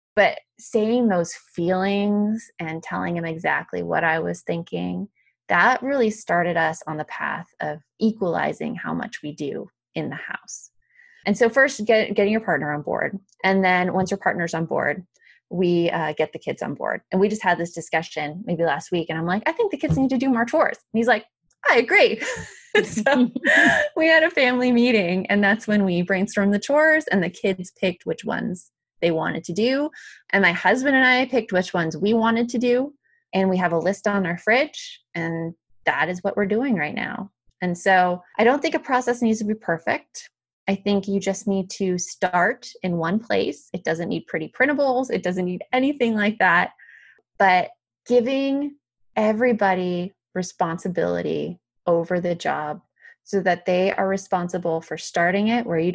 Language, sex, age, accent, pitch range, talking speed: English, female, 20-39, American, 175-245 Hz, 190 wpm